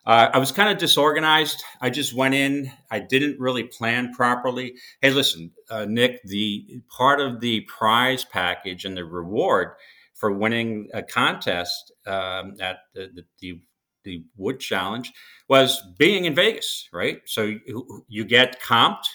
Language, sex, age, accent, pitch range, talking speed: English, male, 50-69, American, 105-135 Hz, 155 wpm